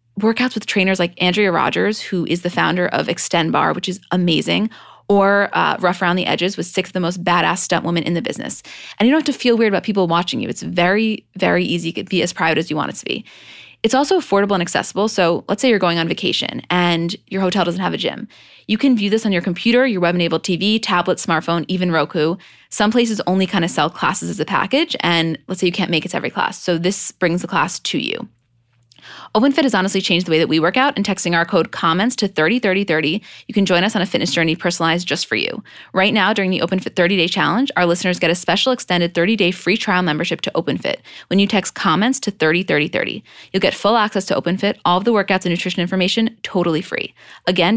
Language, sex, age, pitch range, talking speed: English, female, 20-39, 170-210 Hz, 240 wpm